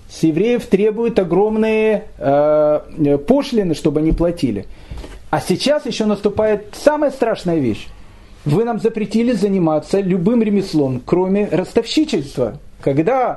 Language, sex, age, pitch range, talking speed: Russian, male, 40-59, 155-215 Hz, 110 wpm